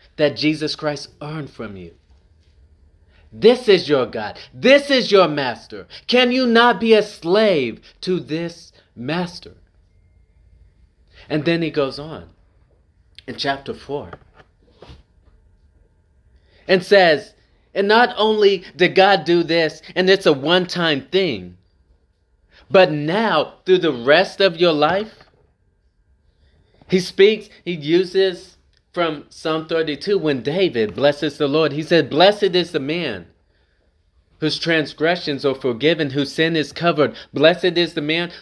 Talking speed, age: 130 wpm, 30-49